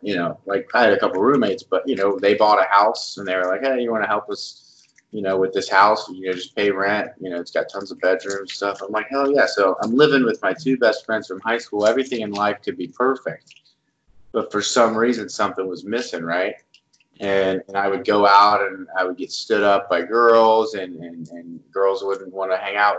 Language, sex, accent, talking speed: English, male, American, 250 wpm